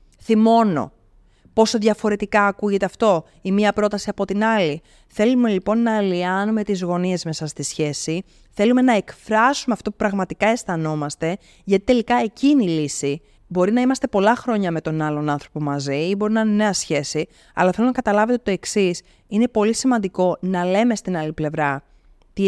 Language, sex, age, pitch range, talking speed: Greek, female, 30-49, 165-220 Hz, 170 wpm